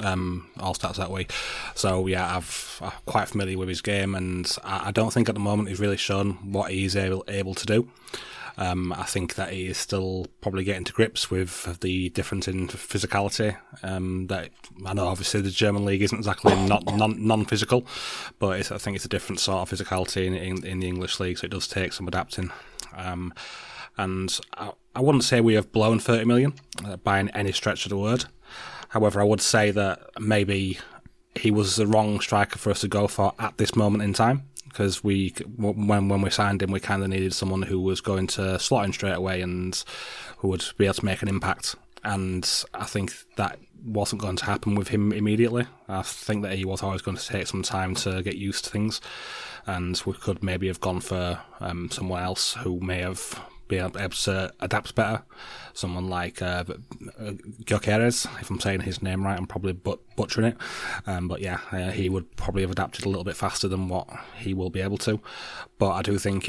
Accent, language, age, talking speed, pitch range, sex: British, English, 30-49, 215 wpm, 95-105 Hz, male